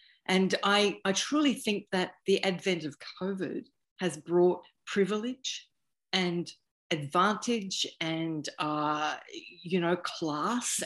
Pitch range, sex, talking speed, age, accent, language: 165-200 Hz, female, 110 wpm, 40-59, Australian, English